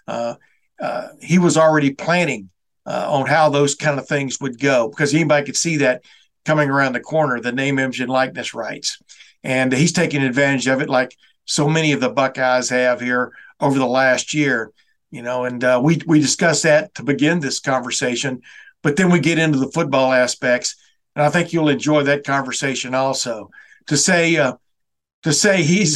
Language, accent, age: English, American, 50-69